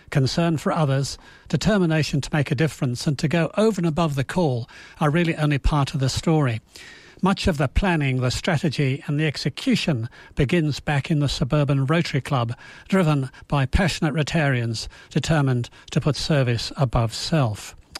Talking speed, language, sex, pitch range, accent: 165 wpm, English, male, 135-165 Hz, British